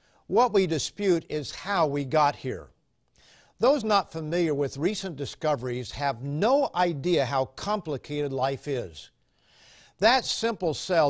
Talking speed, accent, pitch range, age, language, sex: 130 wpm, American, 135-180 Hz, 50-69, English, male